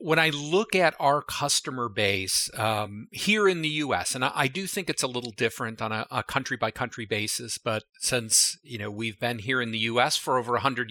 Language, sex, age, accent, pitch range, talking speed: English, male, 40-59, American, 110-125 Hz, 250 wpm